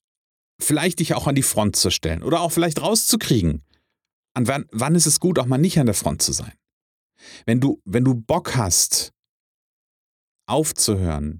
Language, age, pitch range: German, 40-59, 100-130 Hz